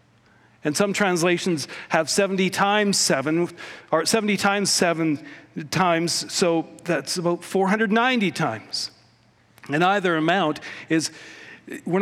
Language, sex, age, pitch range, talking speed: English, male, 50-69, 160-210 Hz, 110 wpm